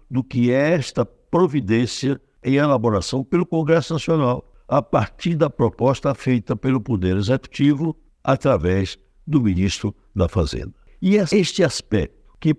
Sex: male